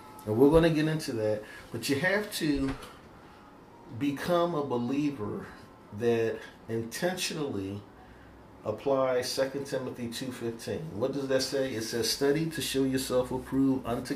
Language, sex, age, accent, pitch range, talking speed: English, male, 40-59, American, 110-135 Hz, 135 wpm